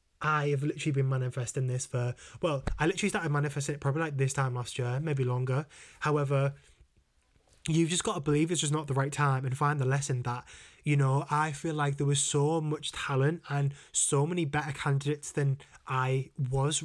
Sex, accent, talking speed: male, British, 200 wpm